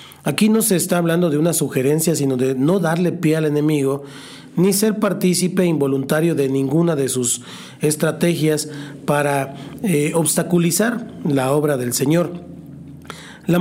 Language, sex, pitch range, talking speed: Spanish, male, 145-175 Hz, 140 wpm